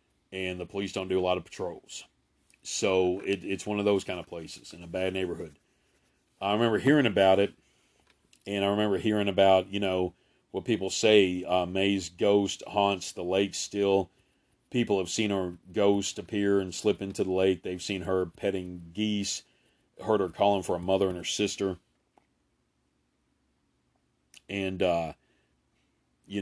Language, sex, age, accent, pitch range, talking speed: English, male, 40-59, American, 90-100 Hz, 165 wpm